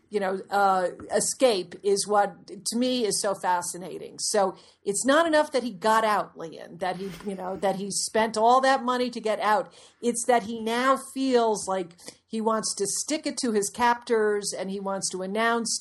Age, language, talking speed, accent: 50-69, English, 195 wpm, American